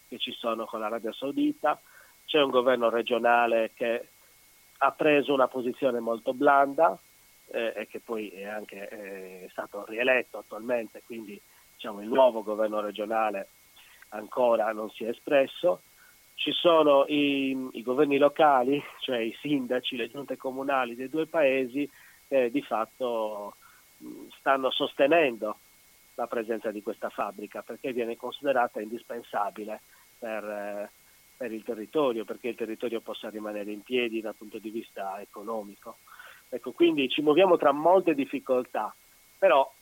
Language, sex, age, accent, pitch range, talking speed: Italian, male, 40-59, native, 110-140 Hz, 140 wpm